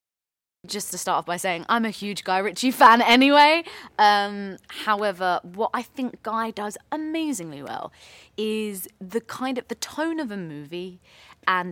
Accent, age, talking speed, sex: British, 20-39, 165 wpm, female